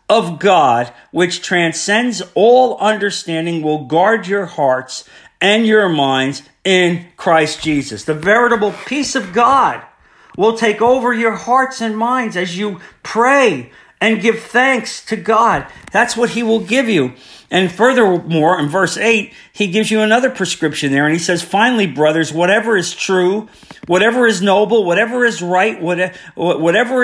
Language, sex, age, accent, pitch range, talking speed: English, male, 50-69, American, 145-225 Hz, 150 wpm